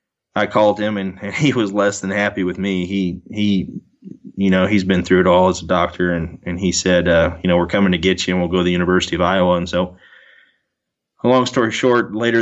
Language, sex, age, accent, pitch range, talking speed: English, male, 20-39, American, 90-105 Hz, 240 wpm